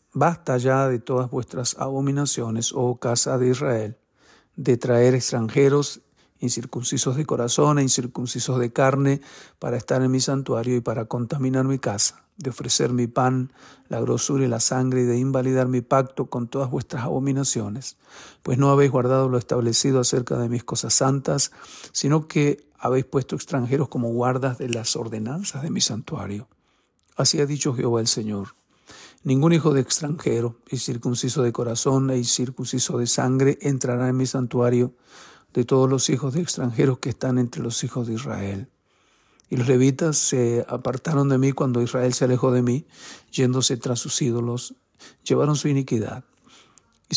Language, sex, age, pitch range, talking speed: Spanish, male, 50-69, 120-140 Hz, 165 wpm